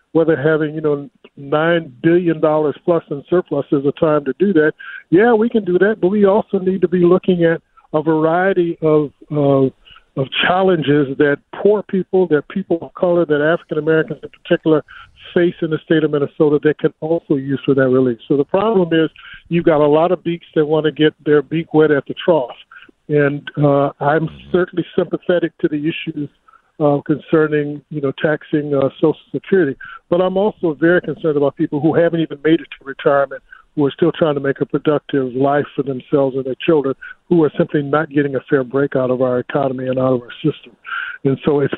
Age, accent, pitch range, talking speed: 50-69, American, 140-170 Hz, 205 wpm